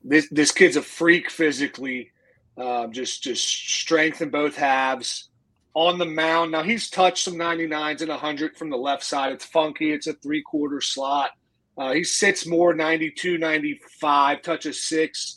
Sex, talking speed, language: male, 160 wpm, English